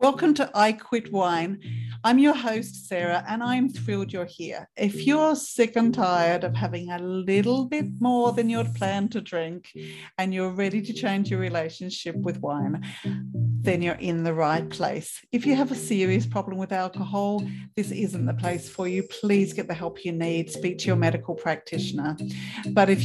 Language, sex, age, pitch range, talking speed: English, female, 50-69, 160-220 Hz, 185 wpm